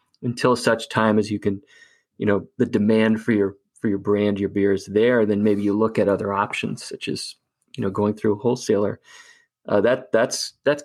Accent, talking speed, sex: American, 210 wpm, male